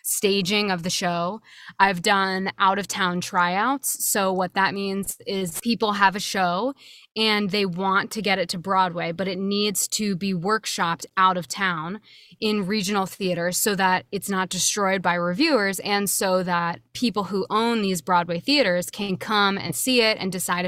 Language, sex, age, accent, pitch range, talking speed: English, female, 20-39, American, 180-210 Hz, 180 wpm